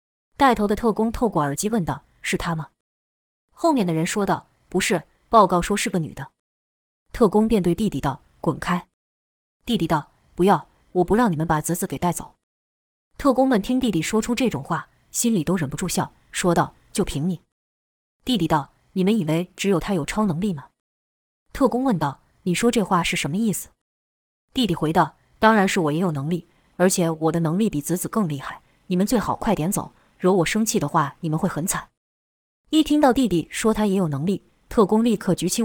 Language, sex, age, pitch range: Chinese, female, 20-39, 155-210 Hz